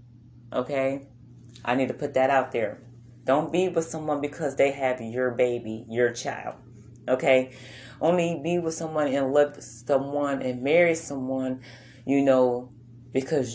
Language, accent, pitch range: English, American, 120-145 Hz